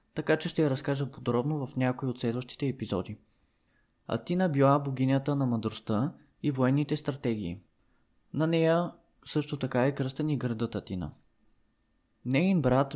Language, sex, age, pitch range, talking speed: Bulgarian, male, 20-39, 120-150 Hz, 140 wpm